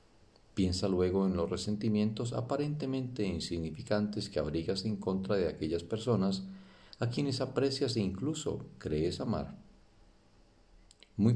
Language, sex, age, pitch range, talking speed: Spanish, male, 40-59, 90-115 Hz, 115 wpm